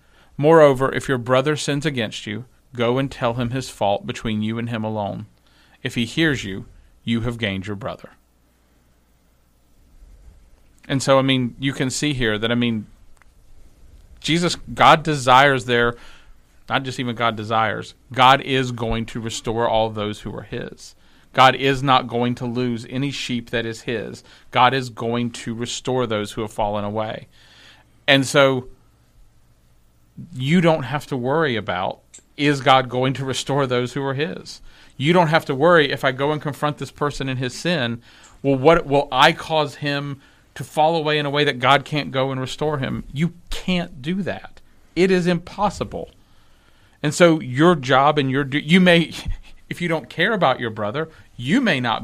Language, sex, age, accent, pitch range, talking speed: English, male, 40-59, American, 115-150 Hz, 175 wpm